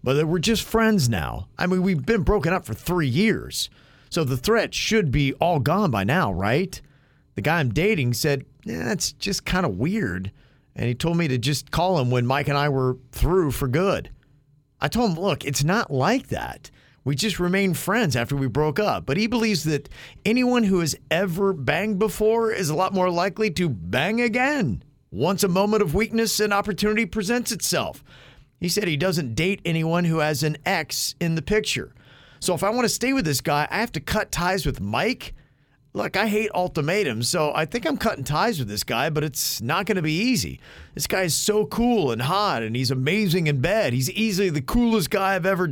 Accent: American